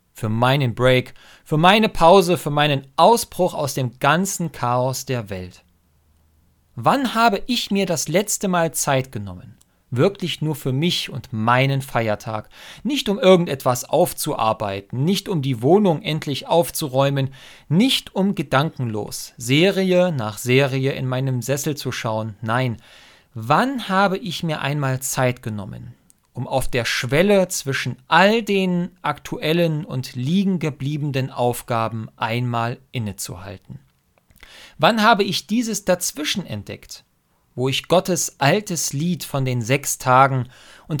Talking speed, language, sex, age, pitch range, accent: 130 wpm, German, male, 40-59, 120-175 Hz, German